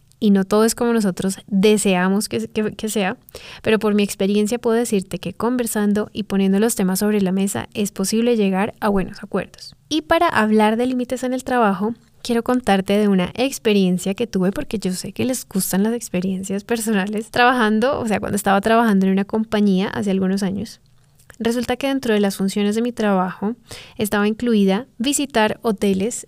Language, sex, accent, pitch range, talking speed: Spanish, female, Colombian, 195-230 Hz, 185 wpm